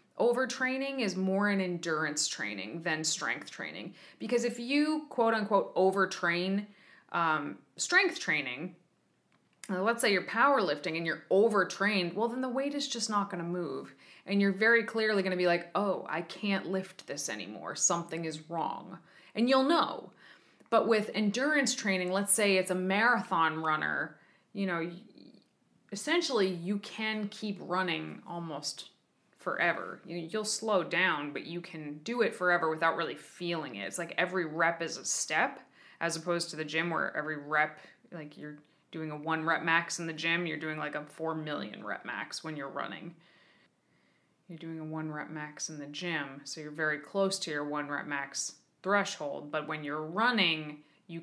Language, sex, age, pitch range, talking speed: English, female, 20-39, 155-205 Hz, 170 wpm